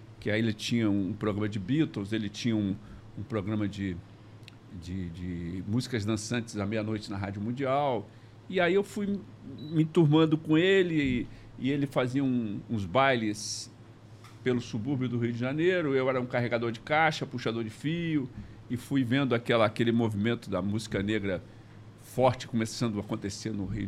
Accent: Brazilian